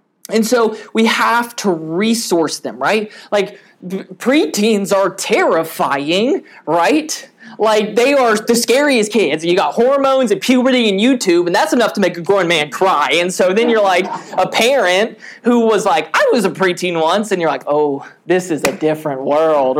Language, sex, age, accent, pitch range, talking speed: English, male, 20-39, American, 160-220 Hz, 180 wpm